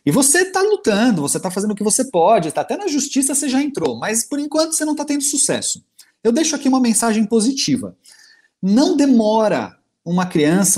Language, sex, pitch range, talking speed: Portuguese, male, 135-215 Hz, 200 wpm